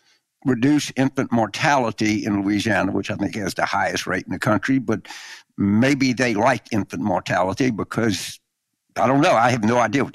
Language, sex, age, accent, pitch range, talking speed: English, male, 60-79, American, 110-145 Hz, 175 wpm